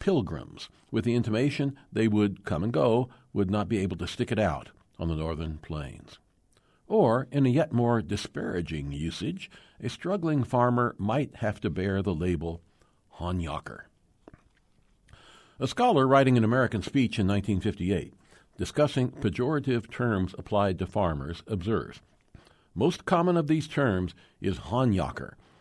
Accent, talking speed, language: American, 140 wpm, English